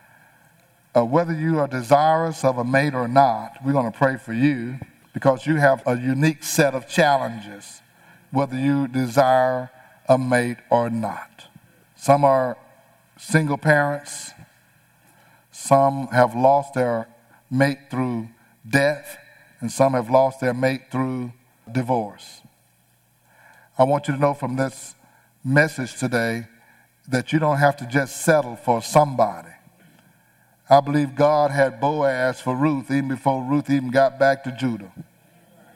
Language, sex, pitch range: English, male, 130-165 Hz